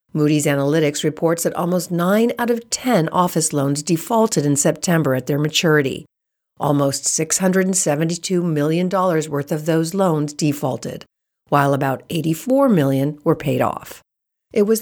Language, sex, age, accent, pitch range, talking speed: English, female, 50-69, American, 145-210 Hz, 140 wpm